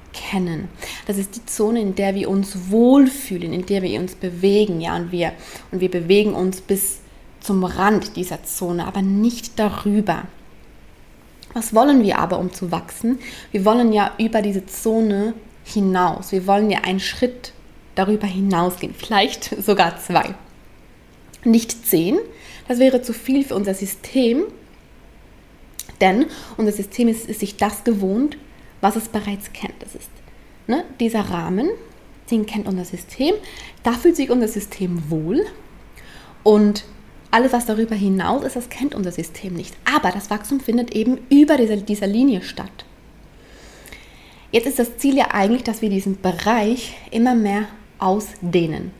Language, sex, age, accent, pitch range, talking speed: German, female, 20-39, German, 190-235 Hz, 150 wpm